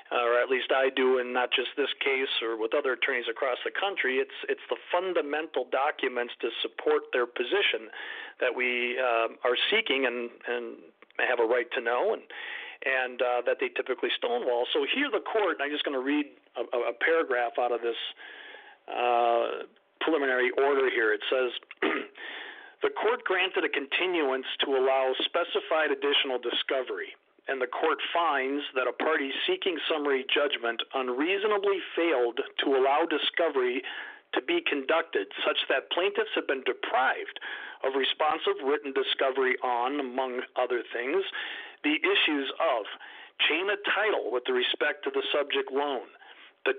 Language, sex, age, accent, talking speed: English, male, 50-69, American, 160 wpm